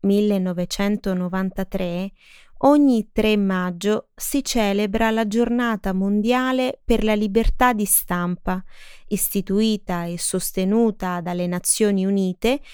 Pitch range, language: 185-235 Hz, Italian